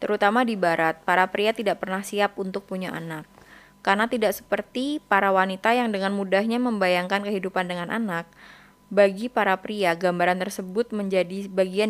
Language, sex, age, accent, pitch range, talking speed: Indonesian, female, 20-39, native, 185-220 Hz, 150 wpm